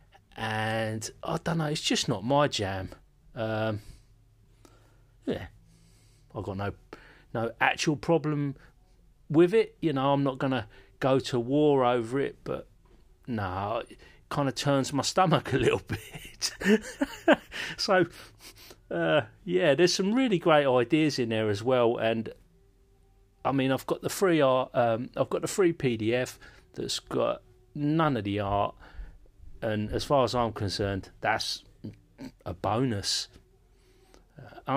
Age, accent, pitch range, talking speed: 30-49, British, 105-140 Hz, 140 wpm